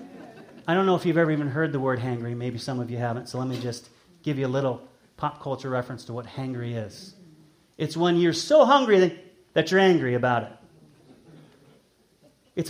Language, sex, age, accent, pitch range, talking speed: English, male, 30-49, American, 130-180 Hz, 200 wpm